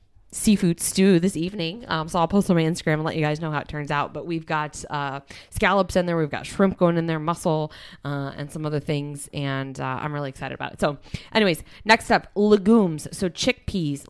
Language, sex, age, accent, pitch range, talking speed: English, female, 20-39, American, 145-175 Hz, 225 wpm